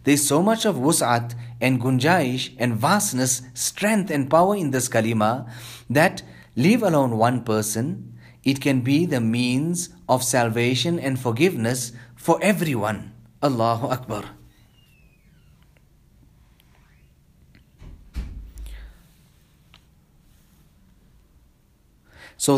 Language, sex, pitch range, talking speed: English, male, 115-155 Hz, 95 wpm